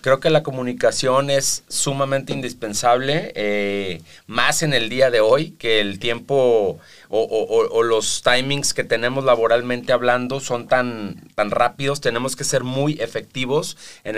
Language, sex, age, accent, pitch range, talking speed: Spanish, male, 40-59, Mexican, 110-140 Hz, 150 wpm